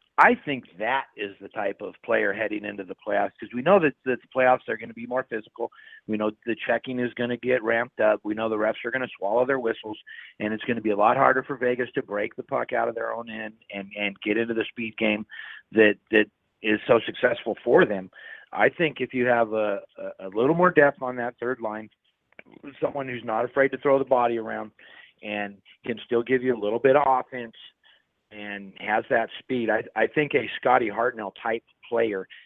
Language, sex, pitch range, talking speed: English, male, 100-120 Hz, 225 wpm